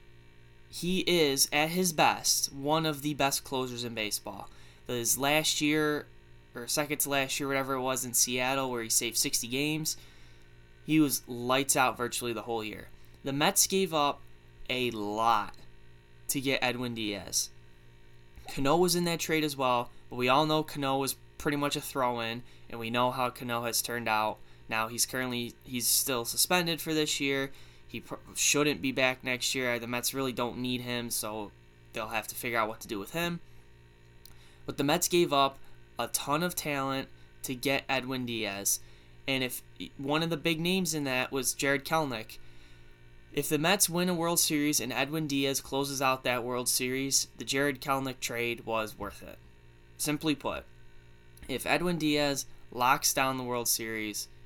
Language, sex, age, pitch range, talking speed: English, male, 10-29, 105-145 Hz, 180 wpm